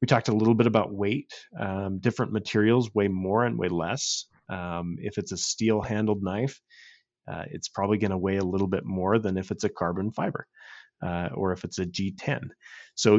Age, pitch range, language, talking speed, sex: 30-49, 95-125 Hz, English, 200 wpm, male